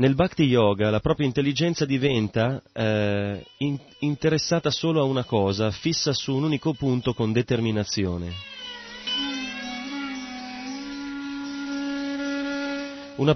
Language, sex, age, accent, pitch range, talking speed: Italian, male, 30-49, native, 110-155 Hz, 100 wpm